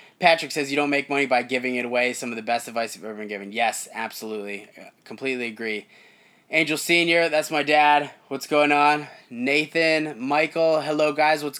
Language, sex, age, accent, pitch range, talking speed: English, male, 20-39, American, 125-155 Hz, 185 wpm